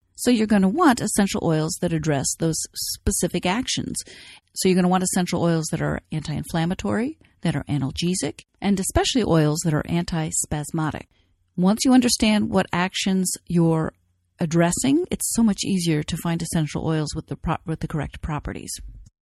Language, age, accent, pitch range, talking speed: English, 40-59, American, 160-195 Hz, 160 wpm